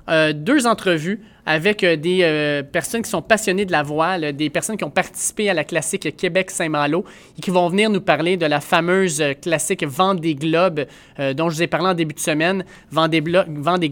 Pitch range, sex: 155-190 Hz, male